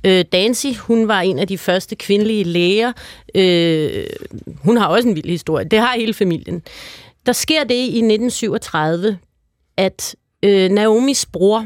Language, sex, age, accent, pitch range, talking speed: Danish, female, 30-49, native, 180-230 Hz, 140 wpm